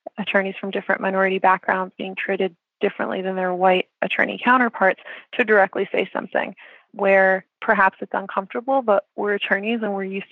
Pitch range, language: 190-205 Hz, English